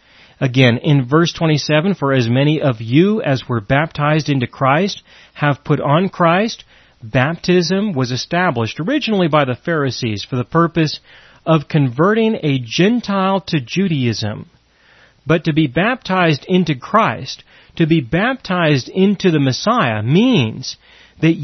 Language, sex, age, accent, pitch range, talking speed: English, male, 40-59, American, 130-185 Hz, 135 wpm